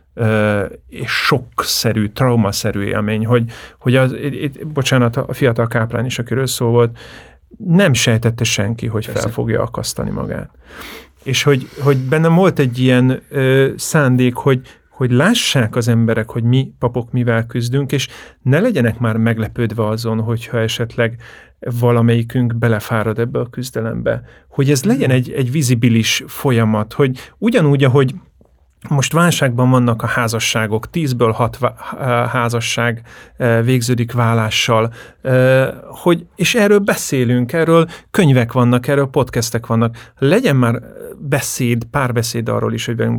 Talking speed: 130 wpm